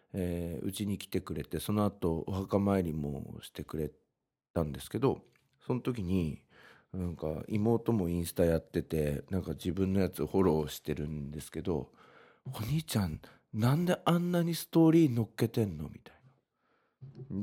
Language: Japanese